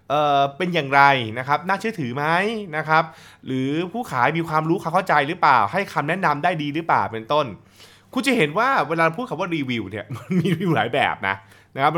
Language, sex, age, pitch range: Thai, male, 20-39, 120-170 Hz